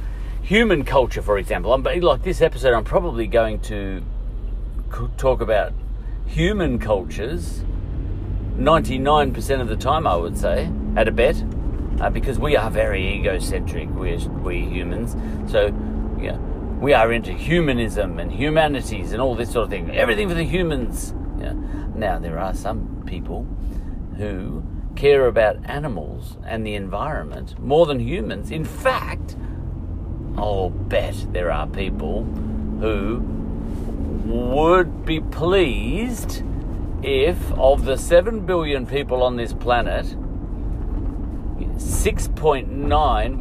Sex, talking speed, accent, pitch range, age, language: male, 125 wpm, Australian, 85-120 Hz, 50-69, English